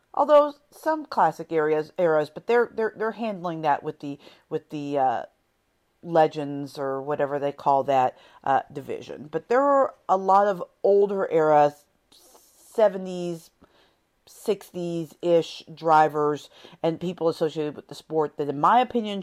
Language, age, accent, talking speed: English, 50-69, American, 145 wpm